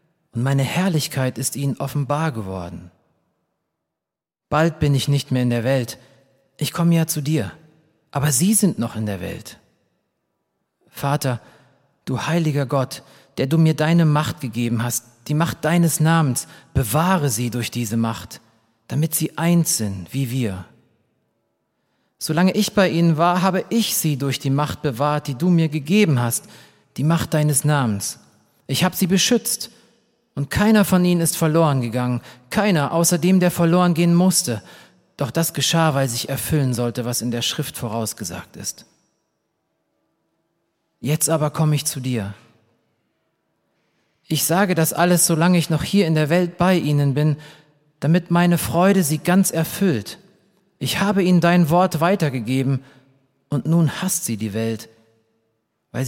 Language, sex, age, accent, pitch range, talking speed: German, male, 40-59, German, 120-170 Hz, 155 wpm